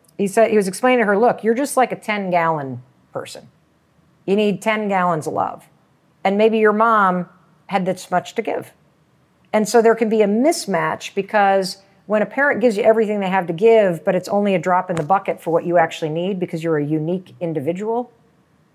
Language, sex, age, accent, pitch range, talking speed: English, female, 50-69, American, 170-215 Hz, 210 wpm